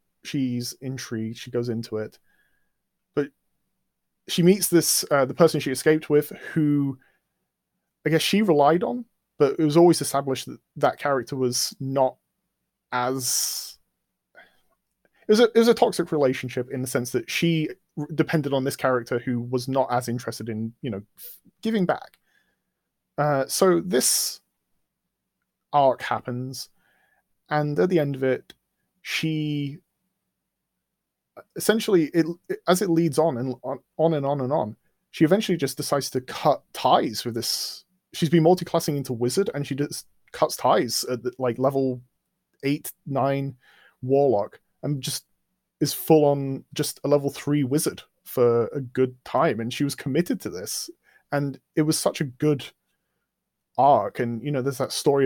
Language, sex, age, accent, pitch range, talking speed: English, male, 30-49, British, 130-165 Hz, 155 wpm